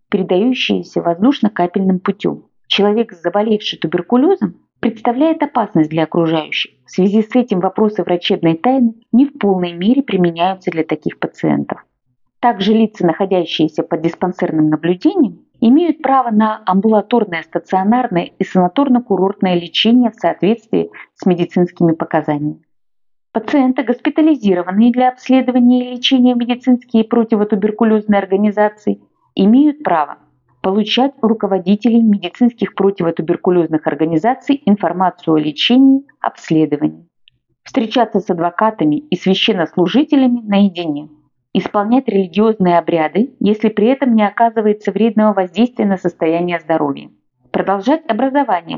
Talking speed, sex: 110 wpm, female